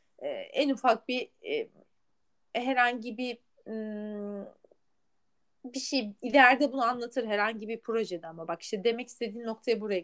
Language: Turkish